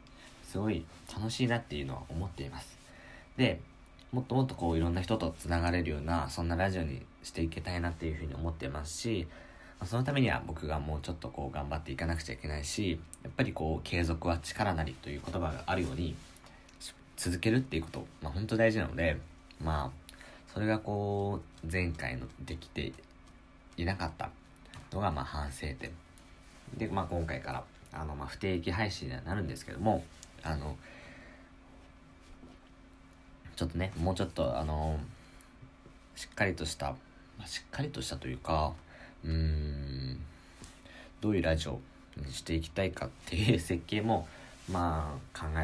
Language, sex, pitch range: Japanese, male, 75-90 Hz